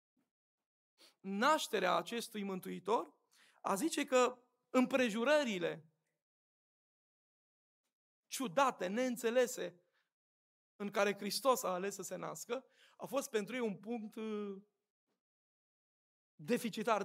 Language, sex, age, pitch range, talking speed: Romanian, male, 20-39, 215-260 Hz, 85 wpm